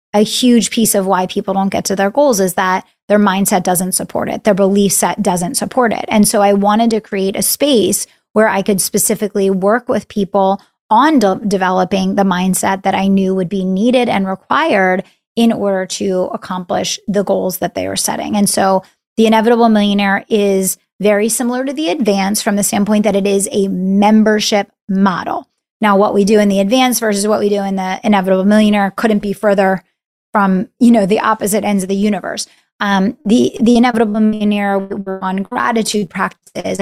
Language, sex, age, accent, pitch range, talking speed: English, female, 20-39, American, 195-220 Hz, 190 wpm